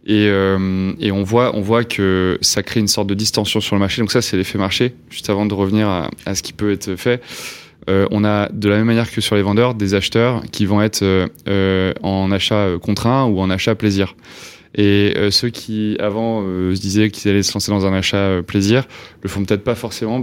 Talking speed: 230 wpm